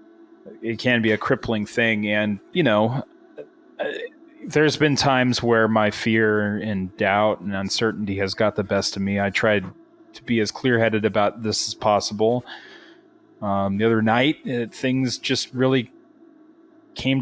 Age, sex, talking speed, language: 30-49, male, 155 wpm, English